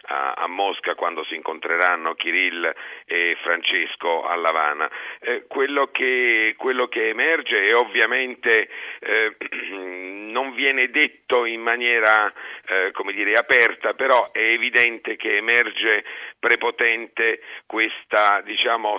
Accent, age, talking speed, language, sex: native, 50-69, 115 wpm, Italian, male